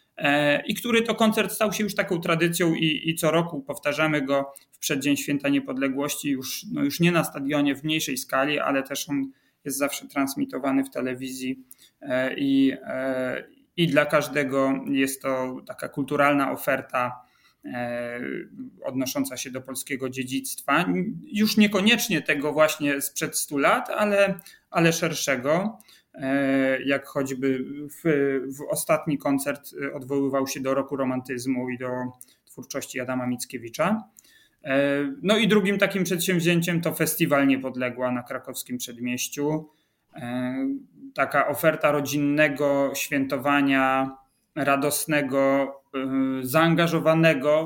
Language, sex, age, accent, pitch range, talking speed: Polish, male, 30-49, native, 135-160 Hz, 115 wpm